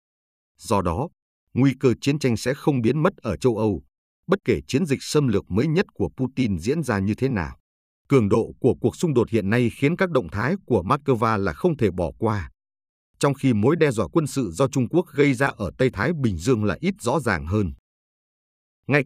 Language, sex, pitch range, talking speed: Vietnamese, male, 100-140 Hz, 220 wpm